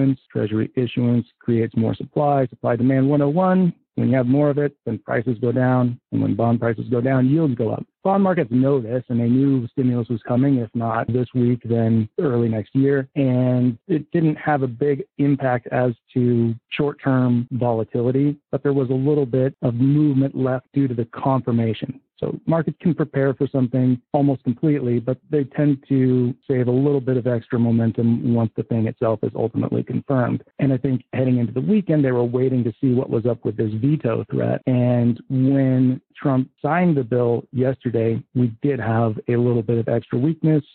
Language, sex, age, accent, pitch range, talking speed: English, male, 40-59, American, 120-140 Hz, 190 wpm